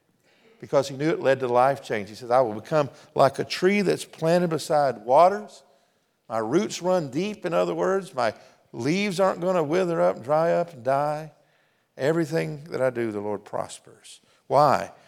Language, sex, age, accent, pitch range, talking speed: English, male, 50-69, American, 120-175 Hz, 185 wpm